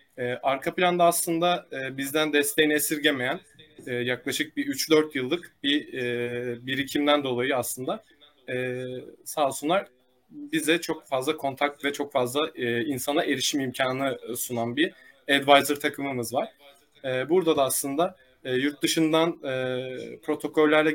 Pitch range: 130-155 Hz